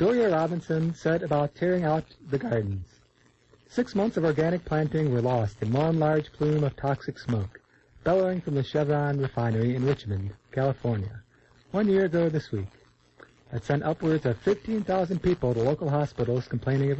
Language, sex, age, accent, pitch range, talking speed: English, male, 50-69, American, 120-160 Hz, 165 wpm